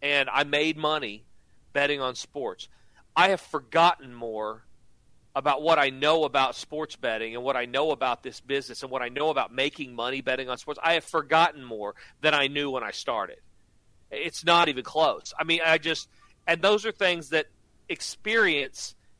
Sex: male